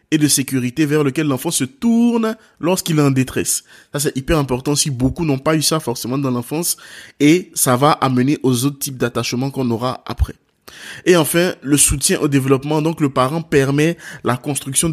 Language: French